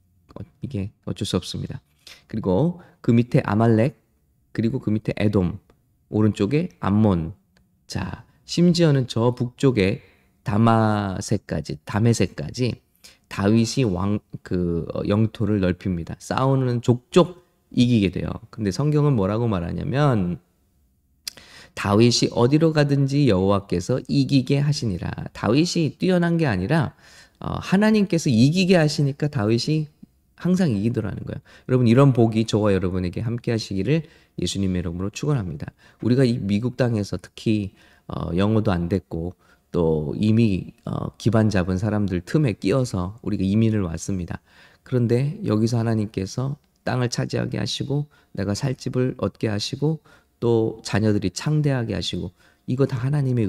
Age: 20-39